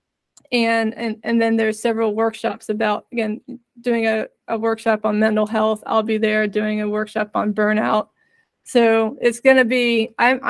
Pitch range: 220-245 Hz